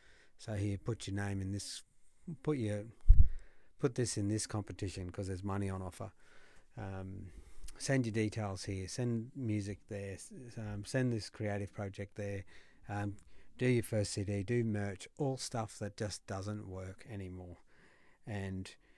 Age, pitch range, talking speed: 60-79, 100-120 Hz, 150 wpm